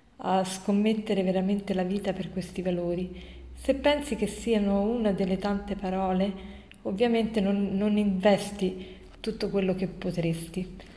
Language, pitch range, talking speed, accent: Italian, 185-215 Hz, 130 wpm, native